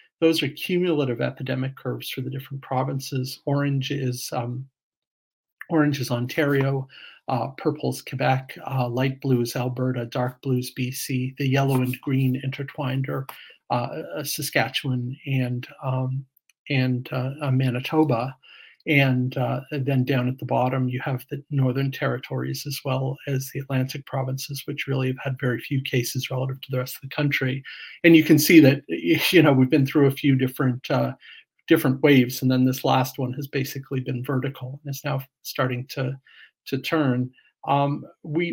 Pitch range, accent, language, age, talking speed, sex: 130-140 Hz, American, English, 50-69, 165 wpm, male